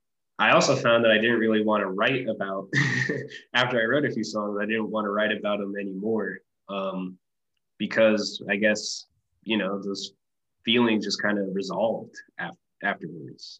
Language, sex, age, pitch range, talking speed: English, male, 20-39, 100-120 Hz, 170 wpm